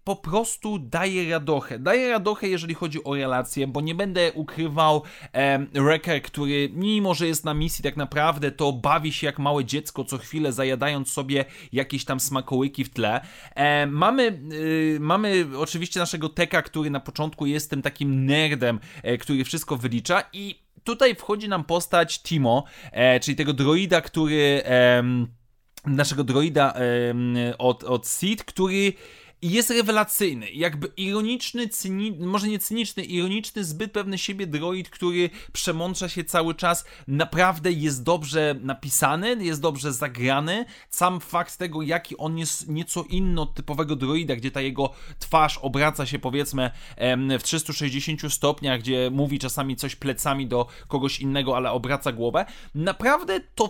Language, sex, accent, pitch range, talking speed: Polish, male, native, 140-185 Hz, 145 wpm